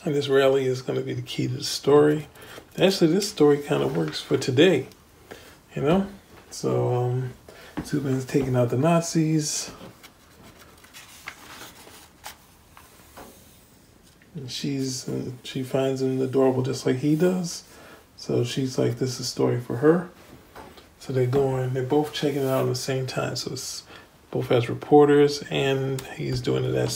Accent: American